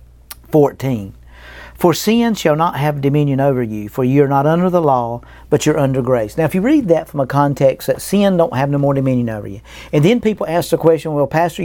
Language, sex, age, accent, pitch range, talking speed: English, male, 50-69, American, 135-170 Hz, 230 wpm